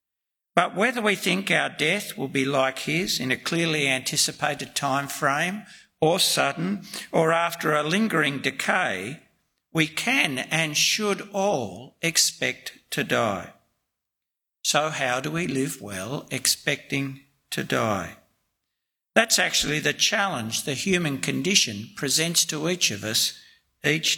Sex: male